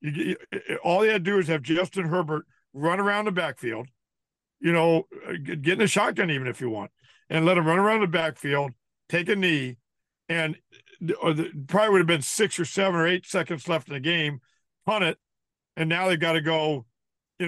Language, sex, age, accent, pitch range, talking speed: English, male, 50-69, American, 150-185 Hz, 190 wpm